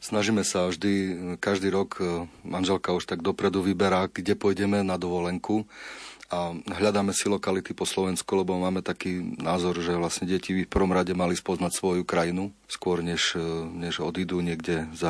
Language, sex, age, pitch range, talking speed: Slovak, male, 40-59, 85-100 Hz, 160 wpm